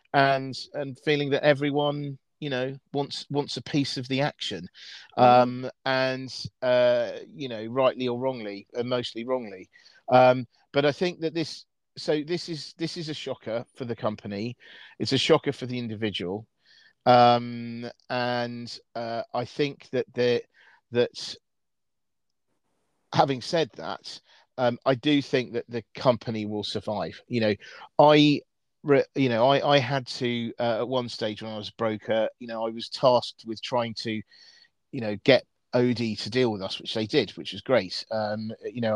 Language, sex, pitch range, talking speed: English, male, 110-135 Hz, 170 wpm